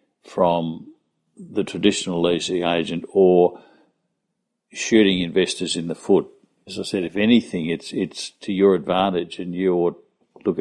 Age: 60-79